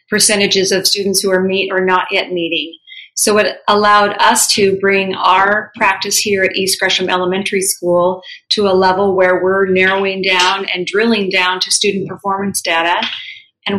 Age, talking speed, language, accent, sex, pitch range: 40-59, 170 wpm, English, American, female, 180-205 Hz